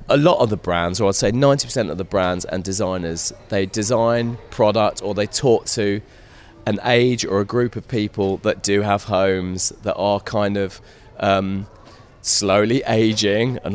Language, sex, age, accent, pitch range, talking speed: English, male, 30-49, British, 95-120 Hz, 175 wpm